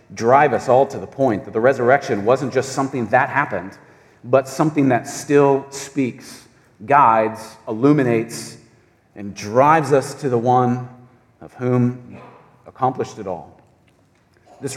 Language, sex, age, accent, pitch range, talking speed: English, male, 40-59, American, 125-160 Hz, 135 wpm